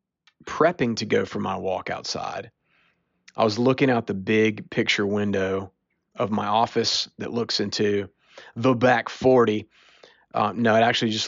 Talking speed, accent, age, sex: 155 wpm, American, 30-49, male